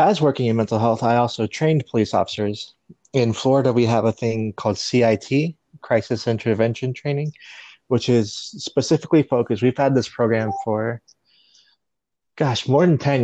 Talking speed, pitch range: 155 wpm, 105-125 Hz